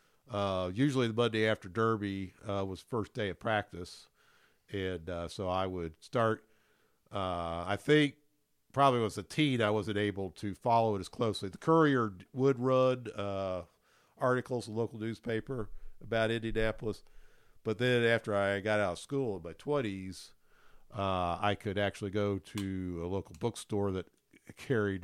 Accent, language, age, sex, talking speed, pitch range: American, English, 50-69, male, 160 wpm, 95-115 Hz